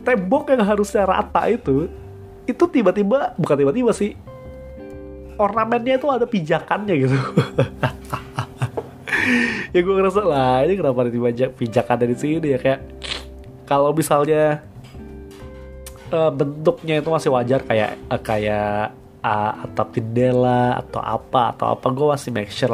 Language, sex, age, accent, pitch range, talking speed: Indonesian, male, 20-39, native, 115-145 Hz, 125 wpm